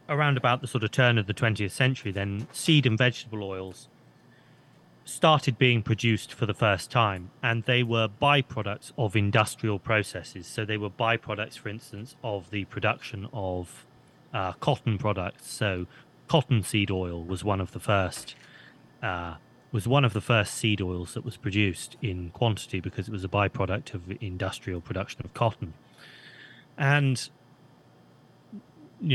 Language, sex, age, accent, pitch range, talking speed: English, male, 30-49, British, 100-125 Hz, 155 wpm